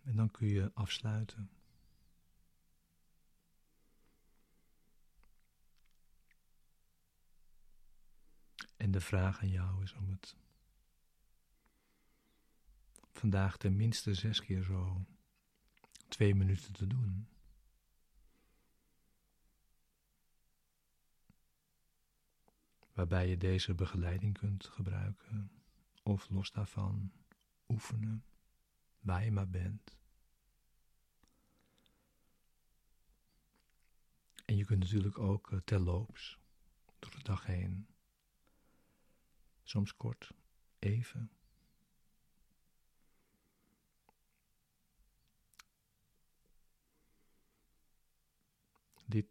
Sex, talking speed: male, 60 wpm